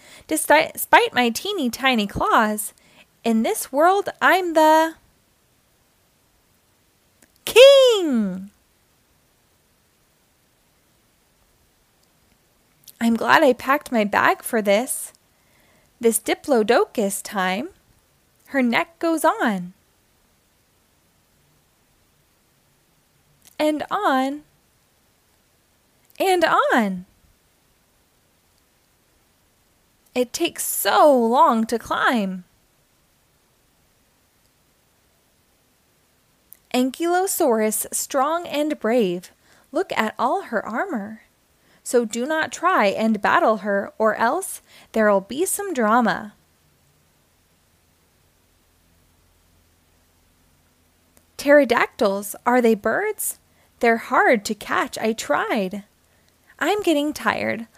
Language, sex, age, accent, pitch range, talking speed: English, female, 20-39, American, 195-315 Hz, 75 wpm